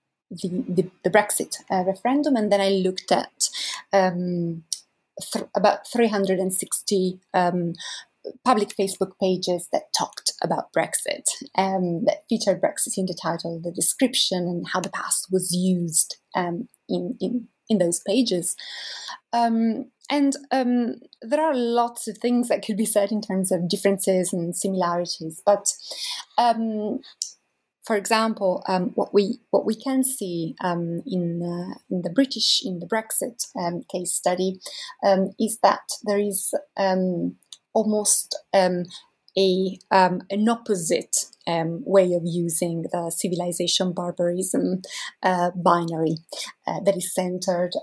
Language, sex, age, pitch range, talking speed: English, female, 20-39, 180-220 Hz, 135 wpm